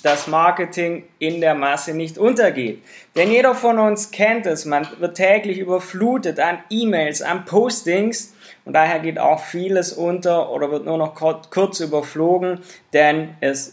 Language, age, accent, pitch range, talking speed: German, 20-39, German, 150-205 Hz, 155 wpm